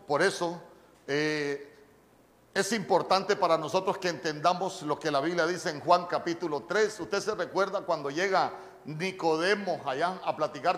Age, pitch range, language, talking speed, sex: 50-69, 155-195 Hz, Spanish, 150 wpm, male